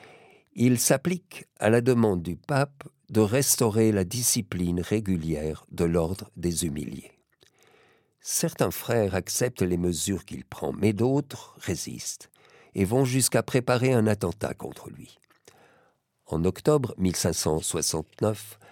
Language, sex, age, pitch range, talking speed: French, male, 50-69, 90-120 Hz, 120 wpm